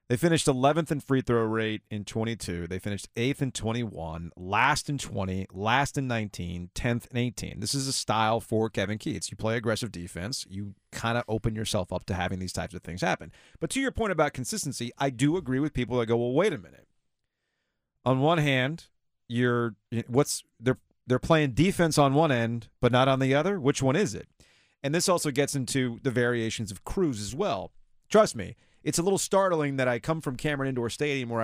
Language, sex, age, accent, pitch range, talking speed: English, male, 40-59, American, 115-150 Hz, 210 wpm